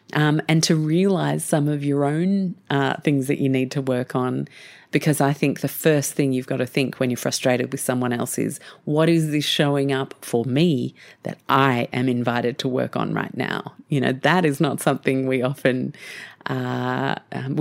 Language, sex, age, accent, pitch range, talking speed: English, female, 30-49, Australian, 130-160 Hz, 200 wpm